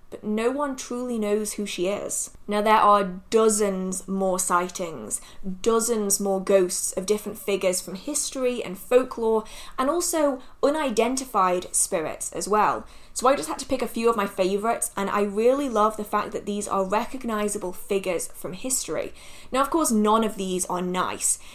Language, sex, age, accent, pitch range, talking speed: English, female, 20-39, British, 195-245 Hz, 175 wpm